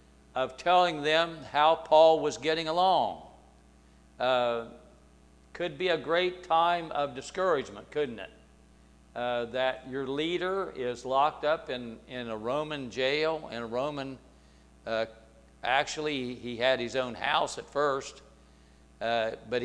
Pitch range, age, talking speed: 95-155 Hz, 60-79, 135 wpm